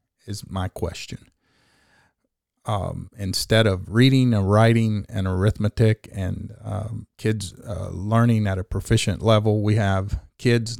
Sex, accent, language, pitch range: male, American, English, 100-120 Hz